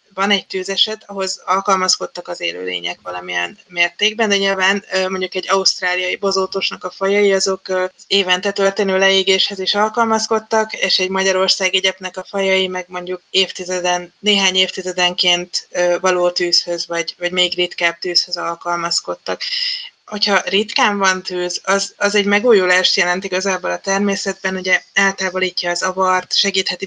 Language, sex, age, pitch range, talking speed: Hungarian, female, 20-39, 180-195 Hz, 135 wpm